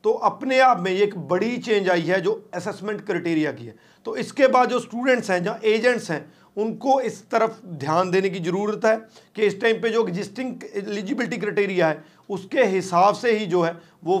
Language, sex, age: Hindi, male, 40-59